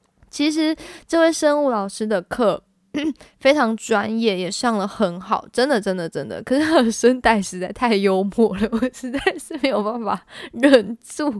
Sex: female